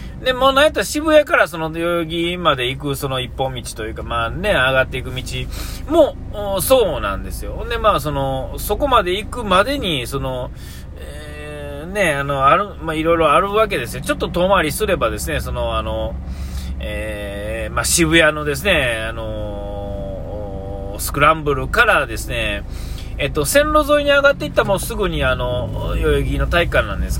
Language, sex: Japanese, male